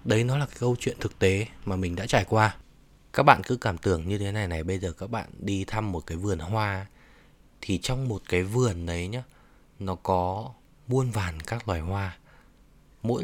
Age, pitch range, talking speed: 20-39, 90-115 Hz, 215 wpm